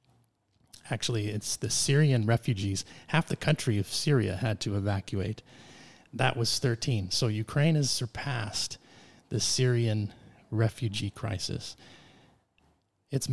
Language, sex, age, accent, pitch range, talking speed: English, male, 30-49, American, 110-130 Hz, 115 wpm